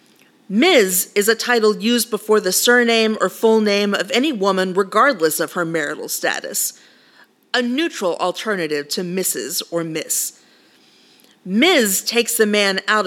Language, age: English, 40-59